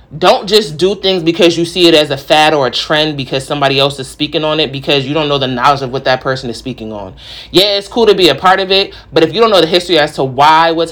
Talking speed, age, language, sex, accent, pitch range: 295 wpm, 30-49, English, male, American, 135-170 Hz